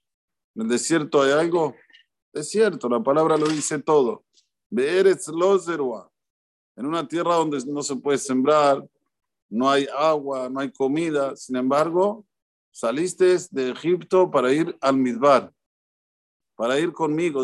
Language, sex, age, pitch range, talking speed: Spanish, male, 50-69, 140-185 Hz, 130 wpm